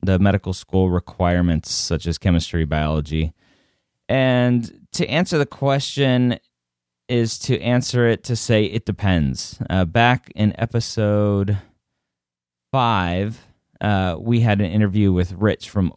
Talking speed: 130 wpm